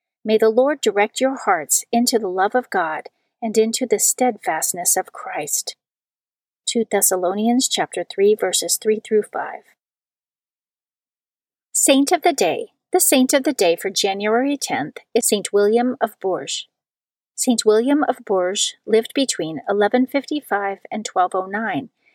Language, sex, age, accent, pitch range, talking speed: English, female, 40-59, American, 210-265 Hz, 140 wpm